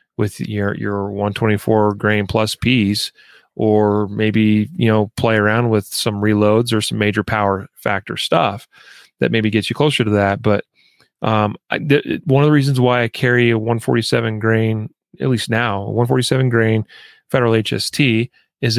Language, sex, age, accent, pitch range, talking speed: English, male, 30-49, American, 105-120 Hz, 180 wpm